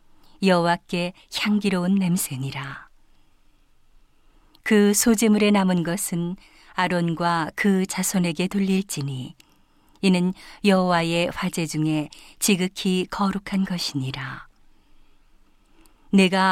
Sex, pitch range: female, 170-200 Hz